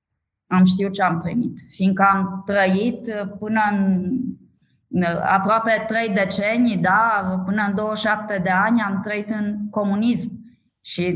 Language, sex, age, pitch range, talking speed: Romanian, female, 20-39, 195-230 Hz, 130 wpm